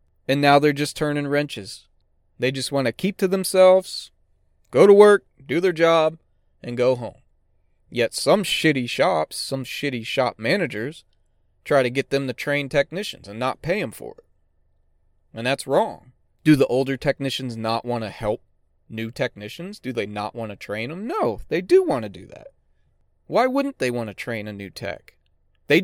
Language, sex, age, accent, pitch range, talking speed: English, male, 30-49, American, 95-150 Hz, 185 wpm